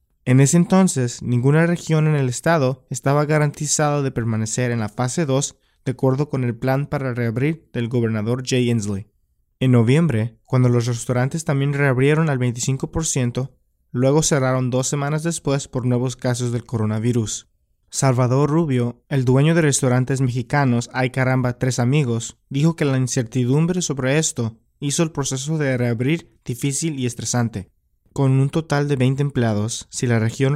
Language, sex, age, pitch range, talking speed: English, male, 20-39, 120-145 Hz, 155 wpm